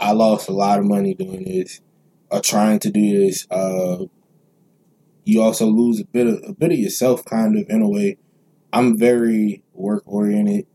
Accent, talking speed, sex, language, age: American, 185 wpm, male, English, 20-39